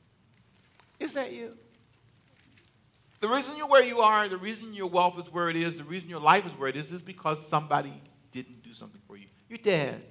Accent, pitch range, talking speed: American, 140-230 Hz, 210 wpm